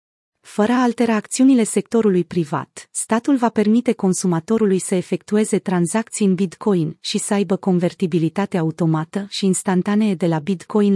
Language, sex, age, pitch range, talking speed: Romanian, female, 30-49, 175-220 Hz, 135 wpm